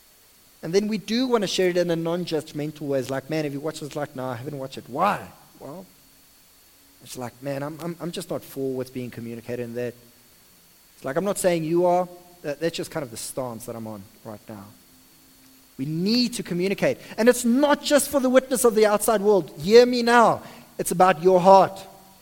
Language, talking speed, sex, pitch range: English, 220 wpm, male, 145-215 Hz